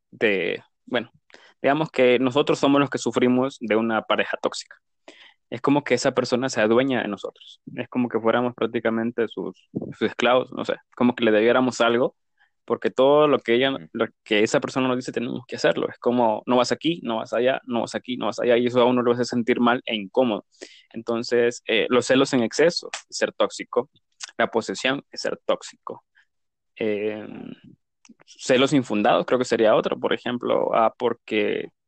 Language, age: Spanish, 20-39